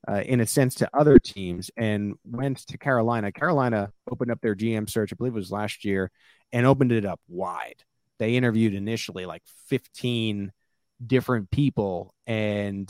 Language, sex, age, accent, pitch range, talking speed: English, male, 30-49, American, 105-125 Hz, 165 wpm